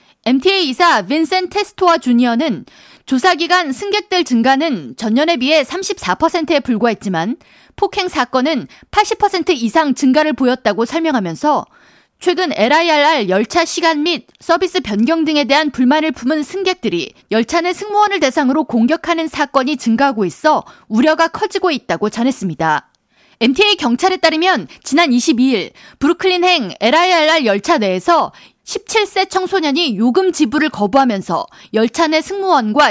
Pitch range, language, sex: 245-350 Hz, Korean, female